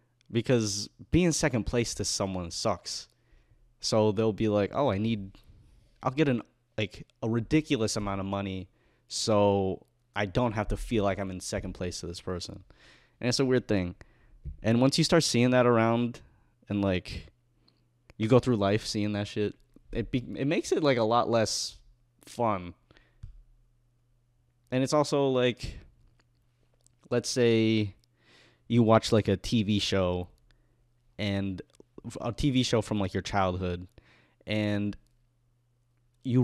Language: English